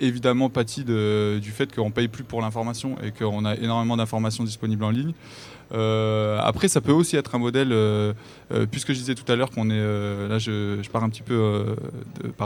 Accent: French